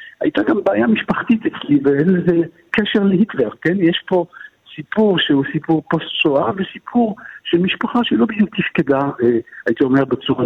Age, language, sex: 60-79, Hebrew, male